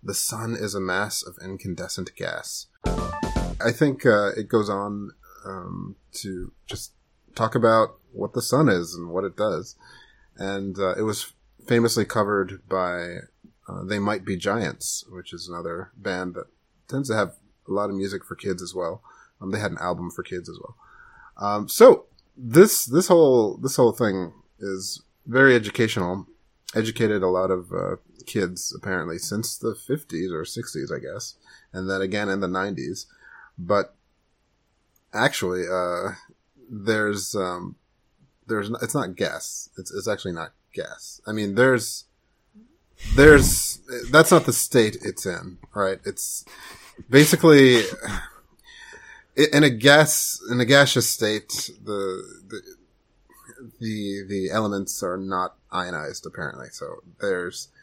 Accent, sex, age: American, male, 30-49